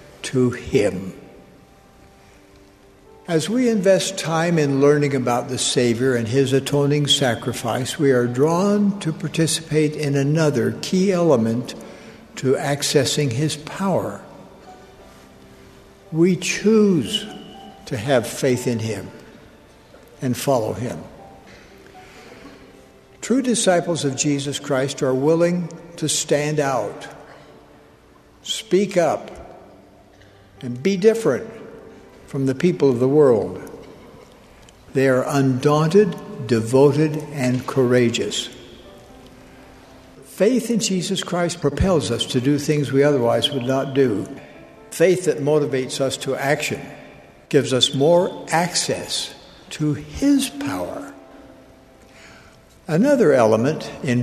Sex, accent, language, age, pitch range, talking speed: male, American, English, 60-79, 125-170 Hz, 105 wpm